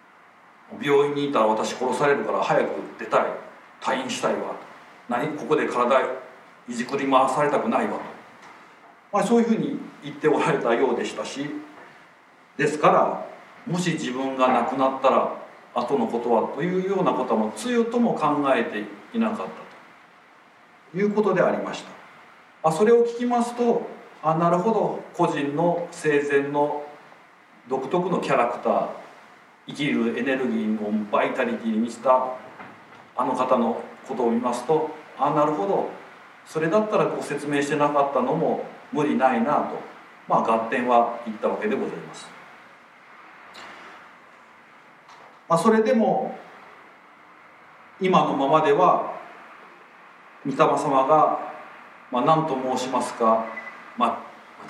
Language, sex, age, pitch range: Japanese, male, 40-59, 125-170 Hz